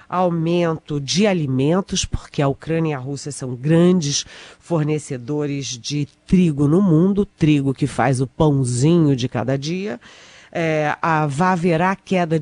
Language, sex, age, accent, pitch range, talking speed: Portuguese, female, 40-59, Brazilian, 145-180 Hz, 125 wpm